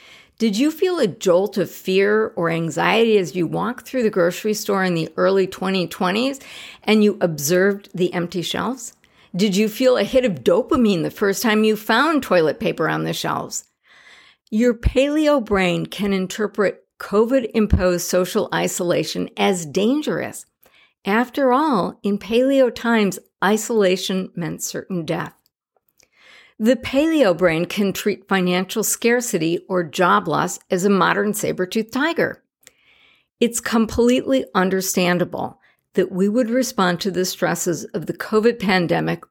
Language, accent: English, American